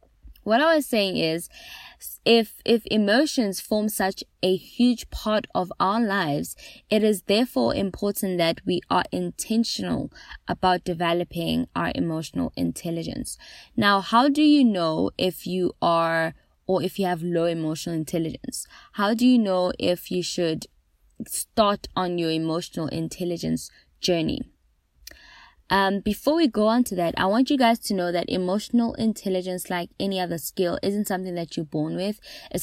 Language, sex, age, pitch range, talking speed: English, female, 10-29, 165-215 Hz, 155 wpm